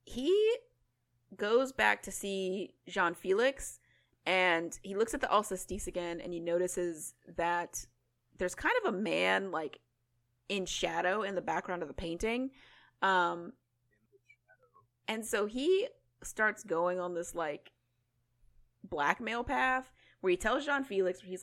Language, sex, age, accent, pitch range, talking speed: English, female, 30-49, American, 165-220 Hz, 130 wpm